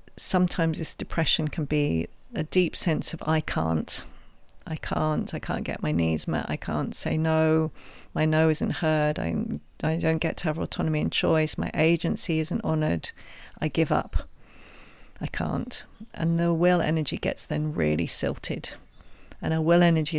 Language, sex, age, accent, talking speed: English, female, 40-59, British, 170 wpm